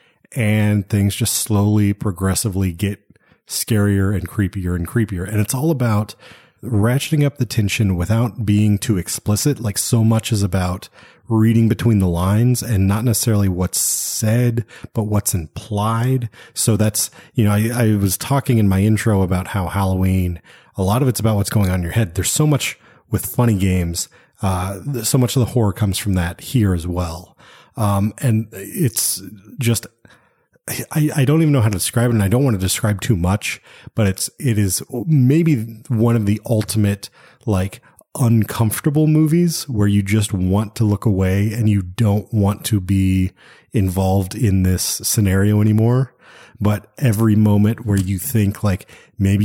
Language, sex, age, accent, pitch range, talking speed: English, male, 30-49, American, 100-120 Hz, 170 wpm